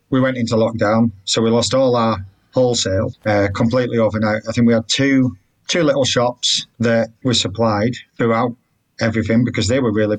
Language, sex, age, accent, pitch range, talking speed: English, male, 30-49, British, 115-130 Hz, 175 wpm